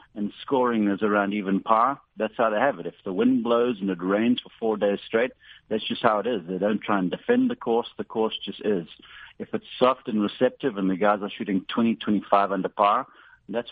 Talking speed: 230 wpm